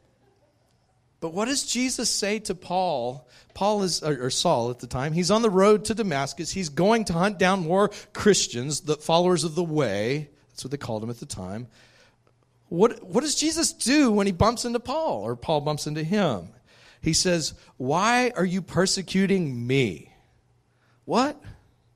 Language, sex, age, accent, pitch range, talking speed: English, male, 40-59, American, 125-170 Hz, 170 wpm